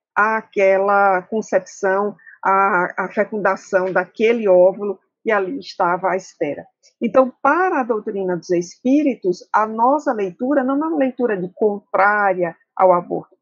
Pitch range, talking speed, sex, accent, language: 200-265 Hz, 125 wpm, female, Brazilian, Portuguese